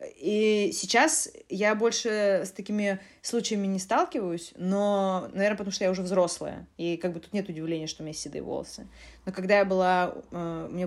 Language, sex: Russian, female